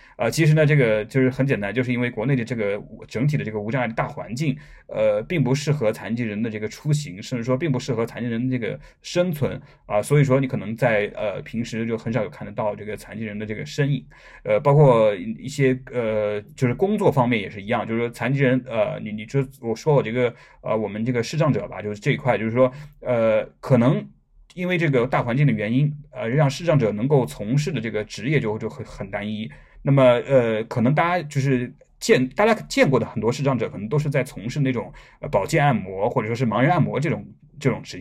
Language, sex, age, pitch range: Chinese, male, 20-39, 110-145 Hz